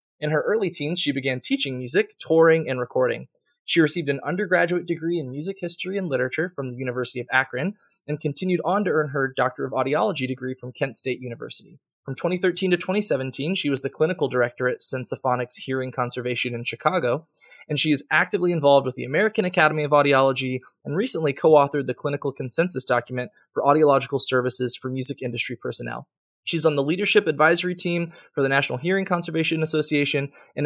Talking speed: 180 wpm